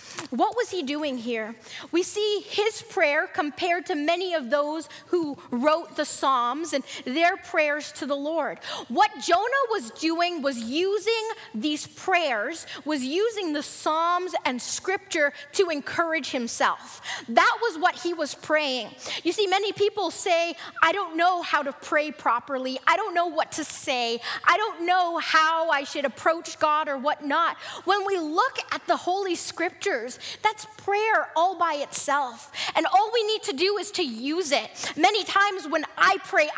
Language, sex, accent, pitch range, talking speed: English, female, American, 290-375 Hz, 165 wpm